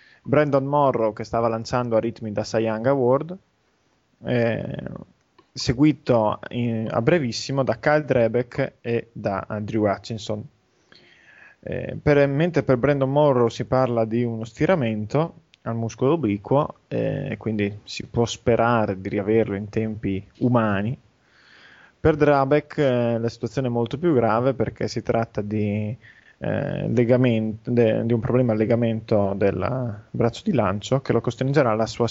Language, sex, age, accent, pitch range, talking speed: Italian, male, 20-39, native, 110-130 Hz, 140 wpm